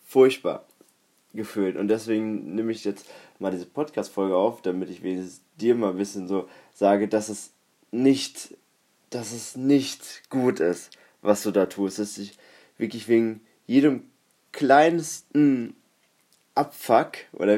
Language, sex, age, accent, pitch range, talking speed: German, male, 20-39, German, 105-140 Hz, 135 wpm